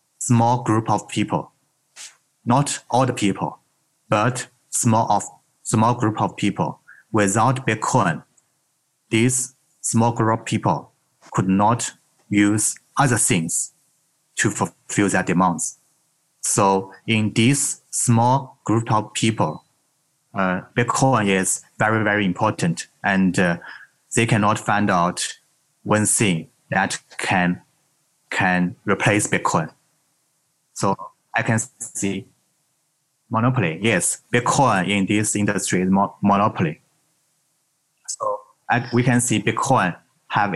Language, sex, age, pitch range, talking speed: English, male, 30-49, 105-135 Hz, 110 wpm